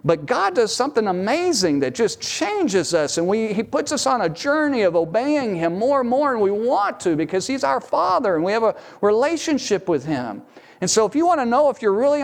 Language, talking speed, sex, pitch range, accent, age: English, 225 wpm, male, 135-200 Hz, American, 40-59